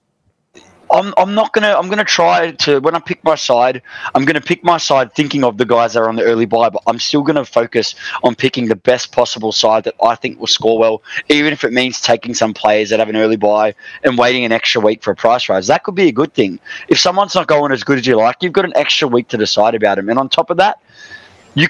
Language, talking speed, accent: English, 275 wpm, Australian